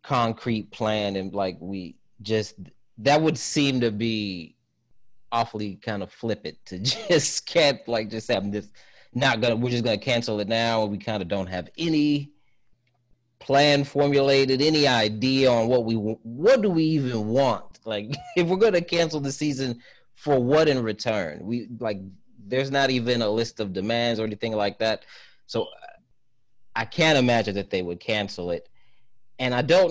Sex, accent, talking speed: male, American, 170 wpm